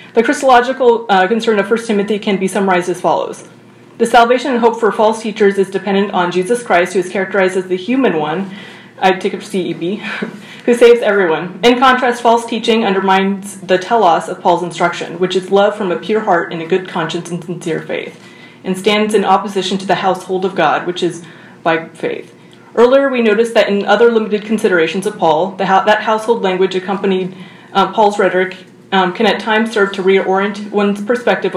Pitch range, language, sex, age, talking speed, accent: 185-215 Hz, English, female, 30-49, 195 wpm, American